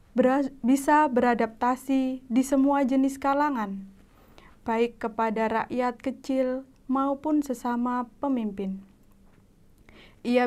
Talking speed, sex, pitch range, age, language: 80 wpm, female, 225-265 Hz, 20-39, Indonesian